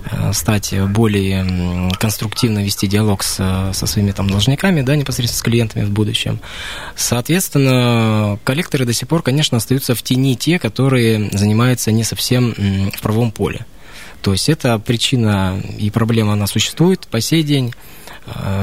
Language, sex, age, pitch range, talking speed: Russian, male, 20-39, 105-130 Hz, 140 wpm